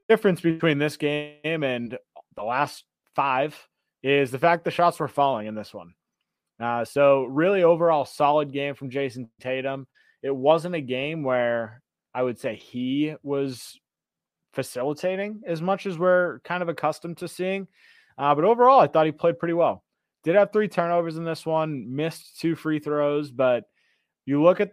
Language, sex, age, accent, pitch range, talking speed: English, male, 30-49, American, 125-160 Hz, 170 wpm